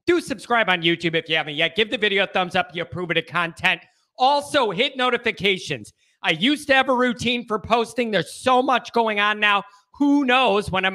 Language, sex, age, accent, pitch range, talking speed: English, male, 30-49, American, 180-250 Hz, 225 wpm